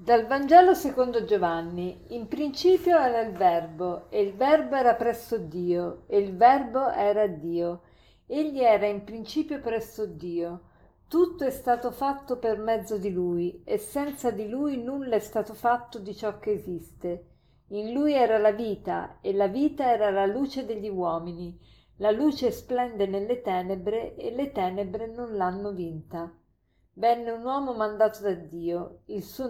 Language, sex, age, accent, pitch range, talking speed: Italian, female, 50-69, native, 195-245 Hz, 160 wpm